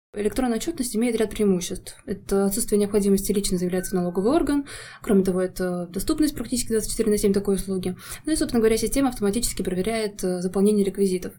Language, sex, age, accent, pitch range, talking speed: Russian, female, 20-39, native, 195-235 Hz, 170 wpm